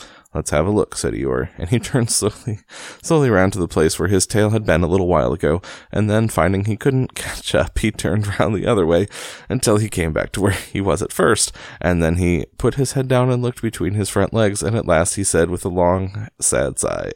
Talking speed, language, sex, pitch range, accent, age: 245 wpm, English, male, 85-110 Hz, American, 30-49